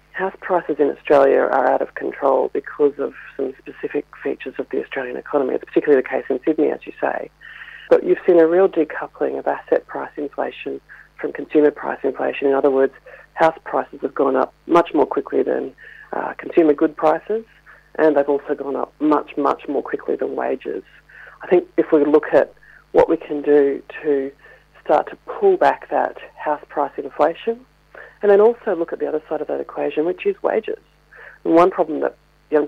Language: English